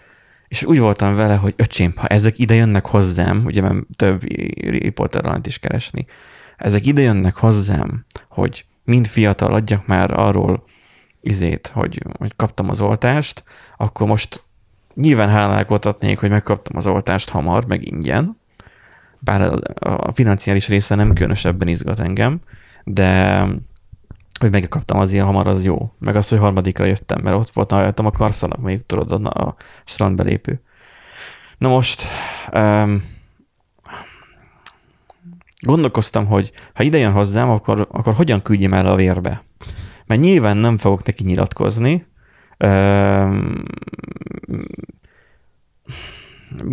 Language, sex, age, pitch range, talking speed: Hungarian, male, 20-39, 95-115 Hz, 130 wpm